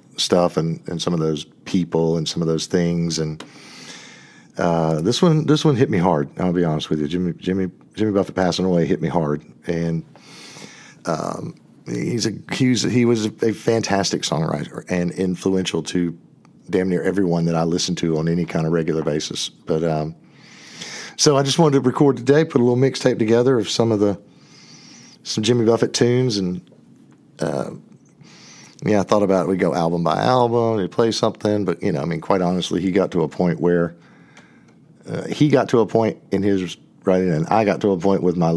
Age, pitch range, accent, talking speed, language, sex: 50-69, 80-105 Hz, American, 200 wpm, English, male